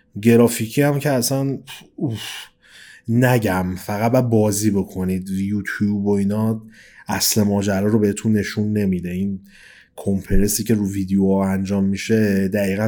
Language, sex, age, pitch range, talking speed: Persian, male, 30-49, 100-120 Hz, 115 wpm